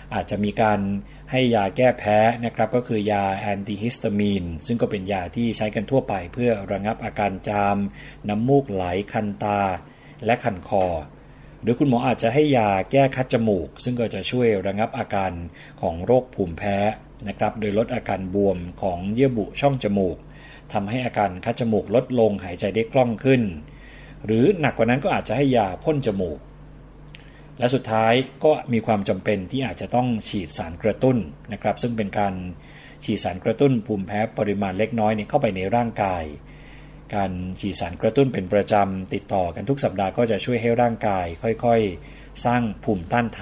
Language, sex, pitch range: Thai, male, 100-125 Hz